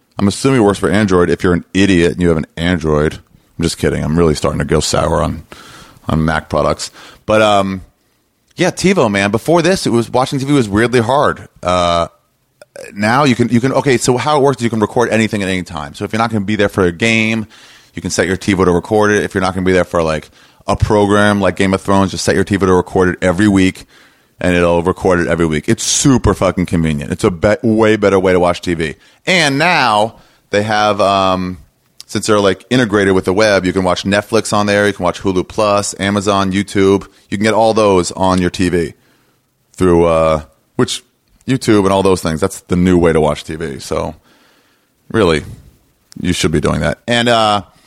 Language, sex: English, male